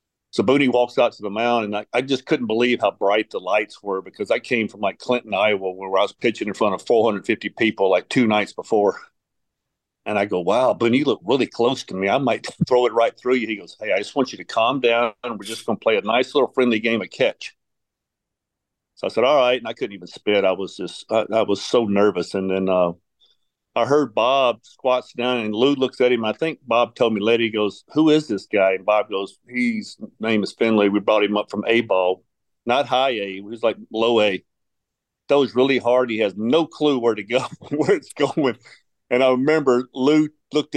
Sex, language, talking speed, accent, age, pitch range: male, English, 240 wpm, American, 50-69, 105-135 Hz